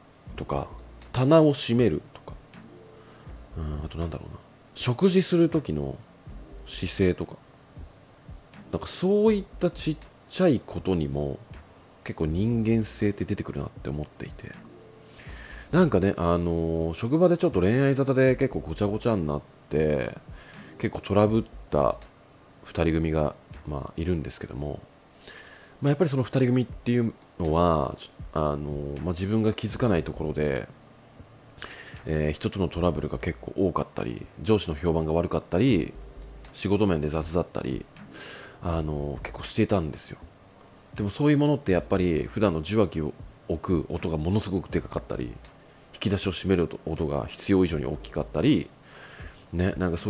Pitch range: 80-120 Hz